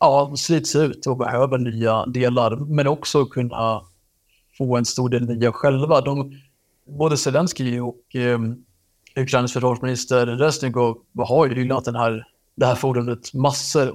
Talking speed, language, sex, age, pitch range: 135 wpm, Swedish, male, 30-49, 120-140 Hz